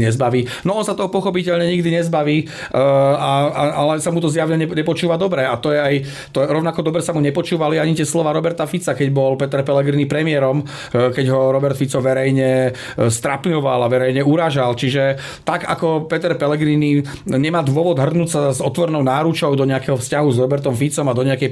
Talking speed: 195 wpm